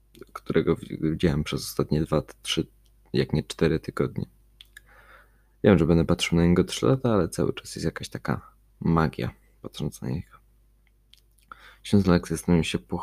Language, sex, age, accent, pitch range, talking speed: Polish, male, 20-39, native, 80-95 Hz, 155 wpm